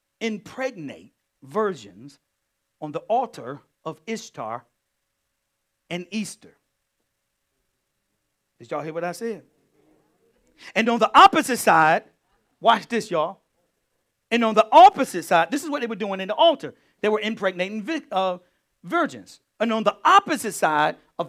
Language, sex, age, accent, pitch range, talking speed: English, male, 50-69, American, 170-255 Hz, 135 wpm